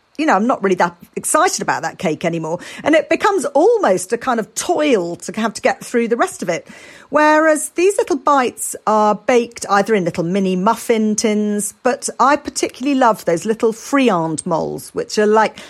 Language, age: English, 40-59